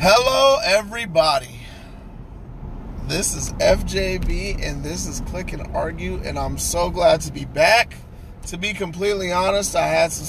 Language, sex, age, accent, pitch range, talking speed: English, male, 30-49, American, 145-200 Hz, 145 wpm